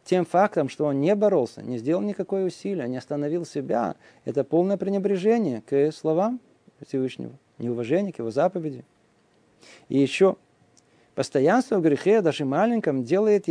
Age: 40-59